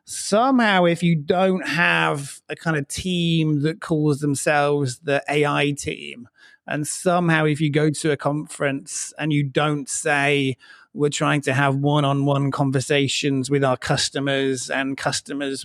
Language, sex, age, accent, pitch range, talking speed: English, male, 30-49, British, 135-155 Hz, 145 wpm